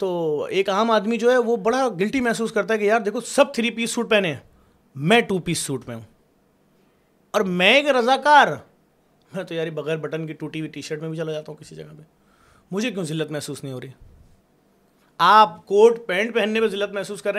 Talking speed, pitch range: 220 wpm, 150-210 Hz